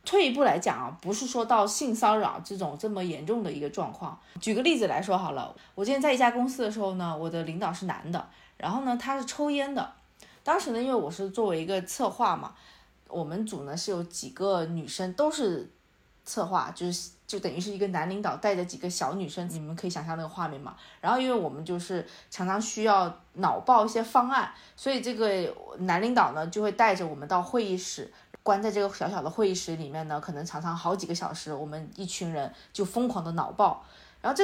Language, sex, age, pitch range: Chinese, female, 20-39, 175-240 Hz